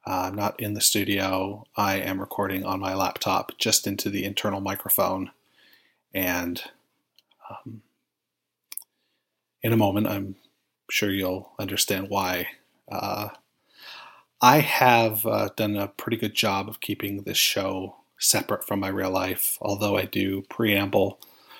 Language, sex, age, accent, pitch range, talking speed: English, male, 30-49, American, 95-105 Hz, 135 wpm